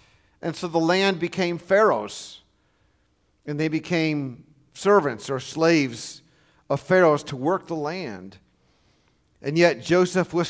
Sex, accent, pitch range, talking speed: male, American, 150-205 Hz, 125 wpm